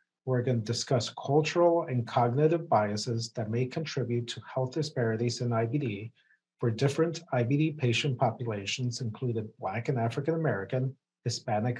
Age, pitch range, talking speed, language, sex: 40-59, 115-145 Hz, 125 wpm, English, male